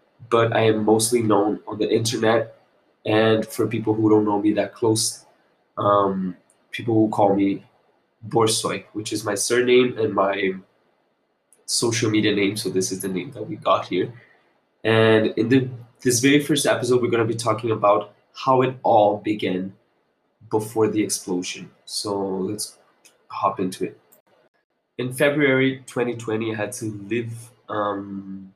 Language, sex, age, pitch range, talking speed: English, male, 20-39, 100-120 Hz, 155 wpm